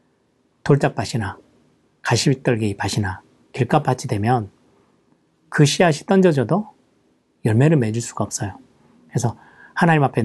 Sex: male